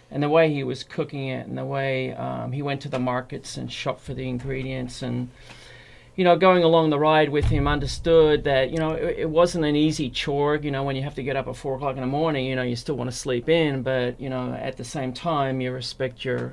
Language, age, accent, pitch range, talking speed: English, 40-59, Australian, 125-150 Hz, 260 wpm